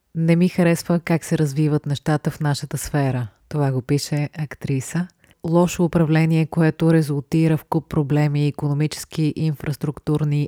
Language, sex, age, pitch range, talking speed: Bulgarian, female, 30-49, 140-160 Hz, 130 wpm